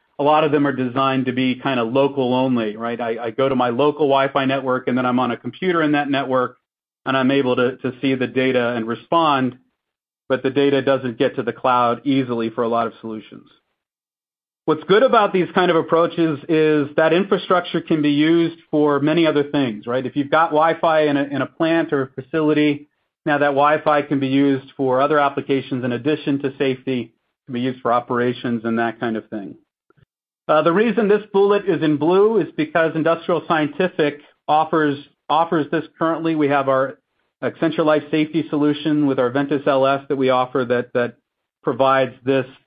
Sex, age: male, 40-59